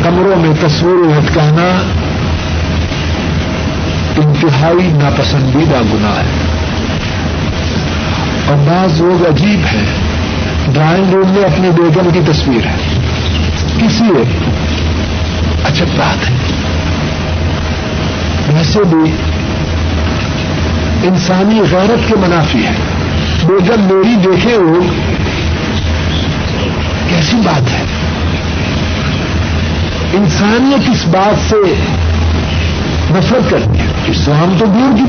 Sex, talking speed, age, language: male, 90 wpm, 60-79, Urdu